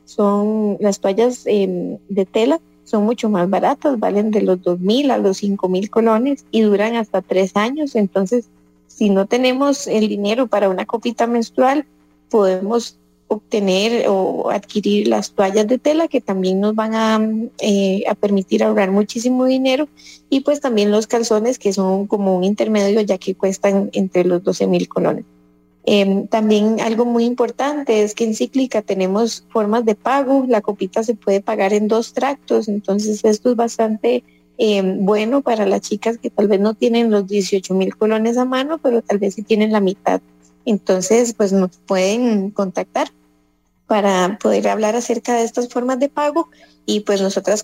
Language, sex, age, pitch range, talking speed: English, female, 30-49, 195-230 Hz, 170 wpm